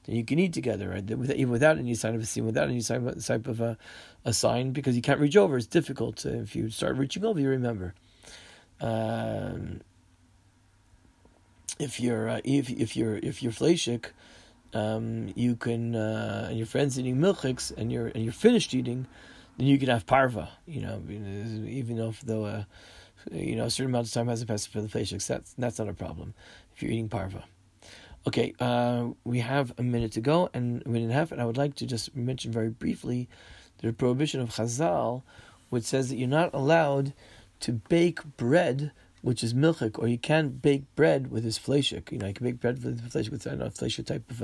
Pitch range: 110-135 Hz